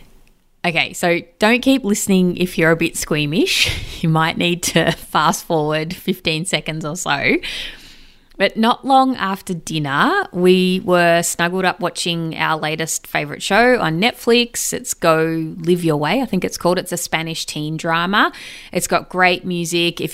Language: English